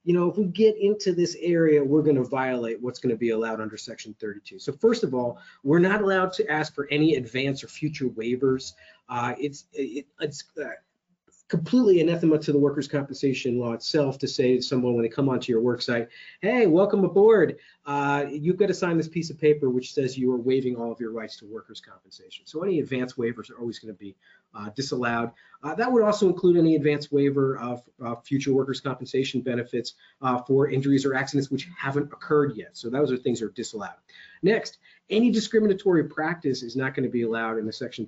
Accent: American